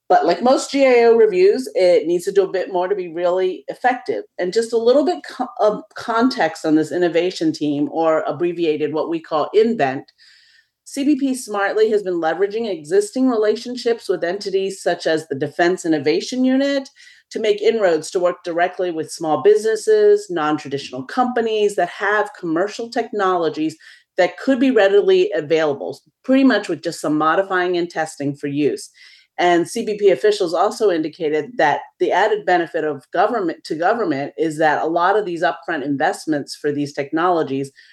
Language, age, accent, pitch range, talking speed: English, 40-59, American, 155-240 Hz, 160 wpm